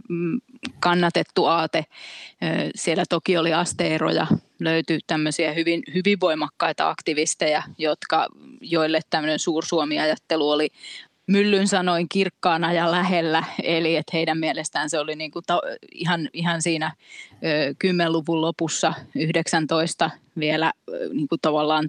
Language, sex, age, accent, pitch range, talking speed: Finnish, female, 20-39, native, 155-175 Hz, 110 wpm